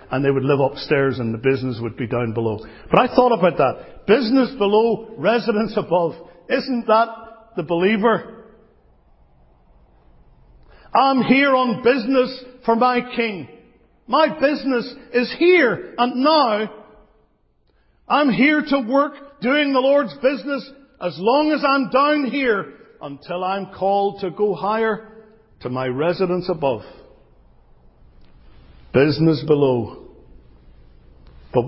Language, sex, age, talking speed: English, male, 50-69, 125 wpm